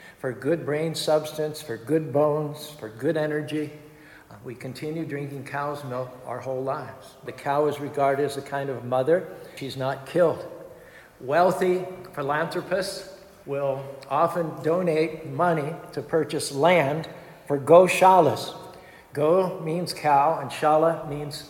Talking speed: 130 wpm